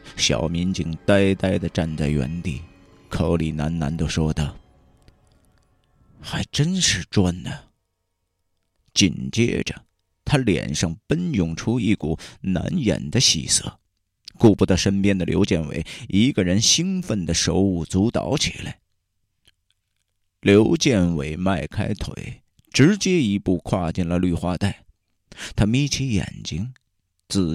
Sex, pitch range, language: male, 85-105 Hz, Chinese